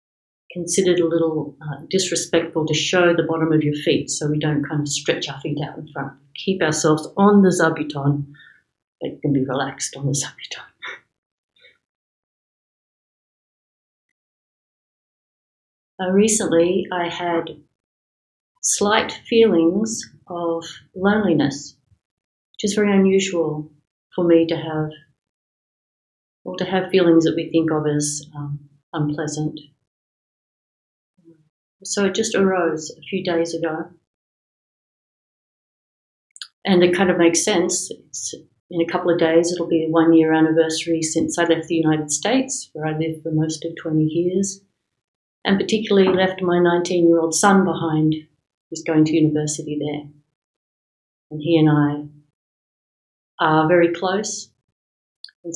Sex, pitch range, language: female, 150-175 Hz, English